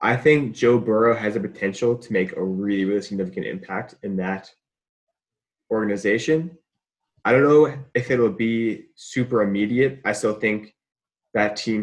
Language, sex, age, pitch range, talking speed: English, male, 20-39, 95-120 Hz, 155 wpm